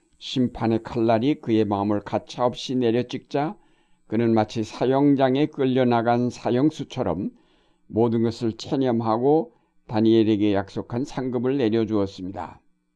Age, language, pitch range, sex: 60-79, Korean, 105-130 Hz, male